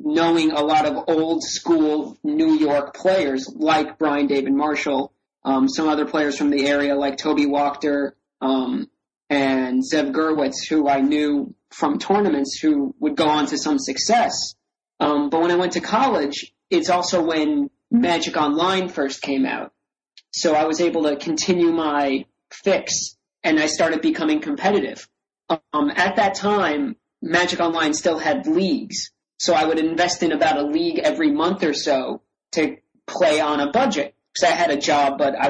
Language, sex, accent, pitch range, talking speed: English, male, American, 145-180 Hz, 170 wpm